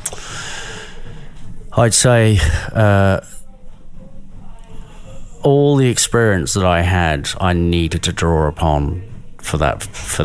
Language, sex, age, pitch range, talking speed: English, male, 30-49, 75-95 Hz, 100 wpm